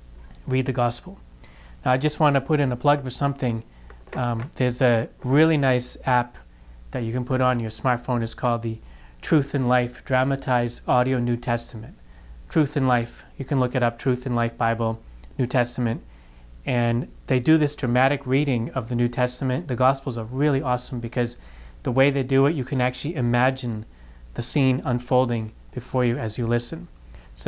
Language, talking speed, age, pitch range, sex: English, 185 wpm, 30-49, 115-130 Hz, male